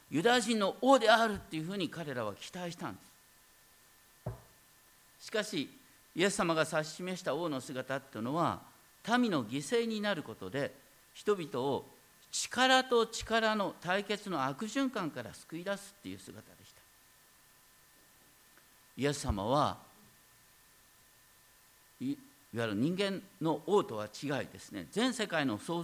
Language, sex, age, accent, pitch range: Japanese, male, 50-69, native, 145-235 Hz